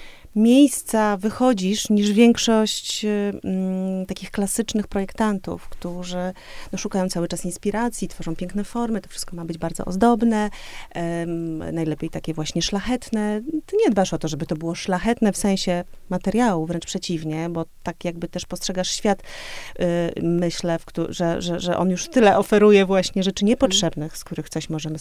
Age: 30-49